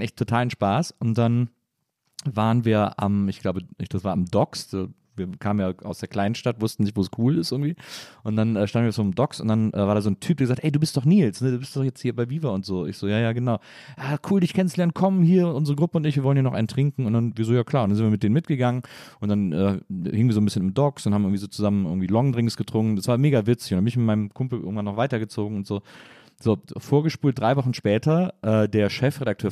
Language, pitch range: German, 100-125 Hz